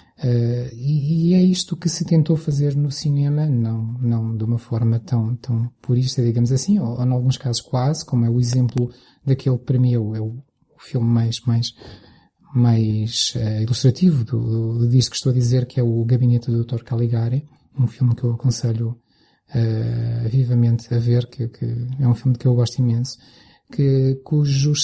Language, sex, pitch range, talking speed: Portuguese, male, 120-135 Hz, 185 wpm